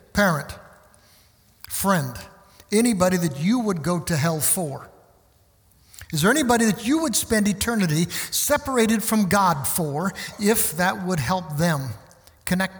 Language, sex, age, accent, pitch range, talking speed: English, male, 60-79, American, 155-210 Hz, 130 wpm